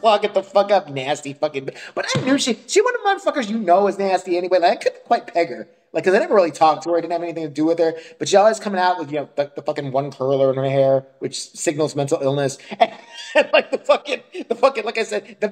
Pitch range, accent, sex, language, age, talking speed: 145-215 Hz, American, male, English, 30-49, 290 wpm